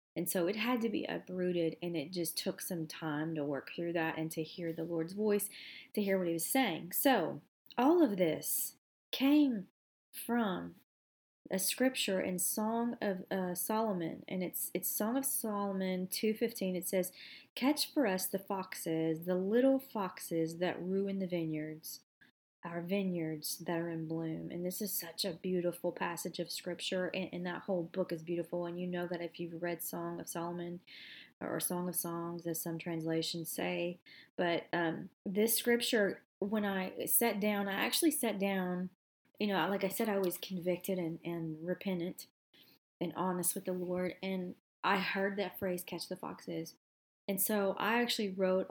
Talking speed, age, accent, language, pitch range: 175 wpm, 30-49, American, English, 170-200 Hz